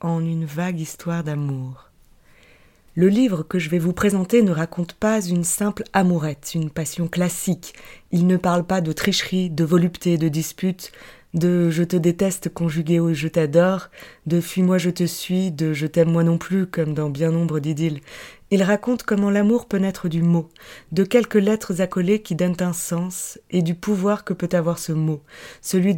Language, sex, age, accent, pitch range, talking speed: French, female, 20-39, French, 165-185 Hz, 200 wpm